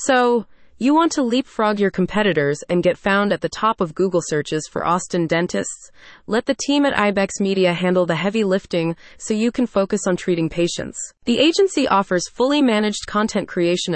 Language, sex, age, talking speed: English, female, 30-49, 185 wpm